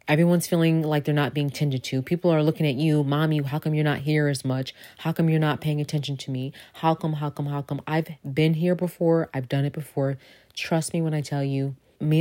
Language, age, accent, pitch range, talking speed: English, 30-49, American, 135-160 Hz, 245 wpm